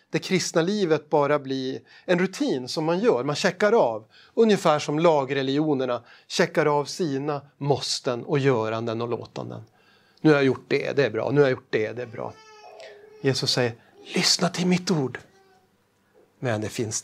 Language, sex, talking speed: Swedish, male, 175 wpm